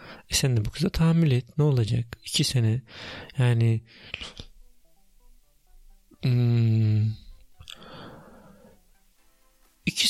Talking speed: 85 wpm